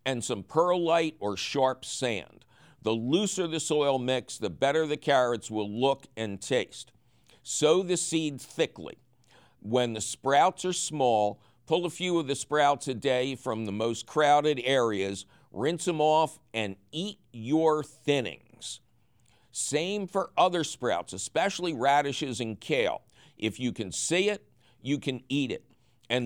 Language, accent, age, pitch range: English, American, 60-79, 115-160 Hz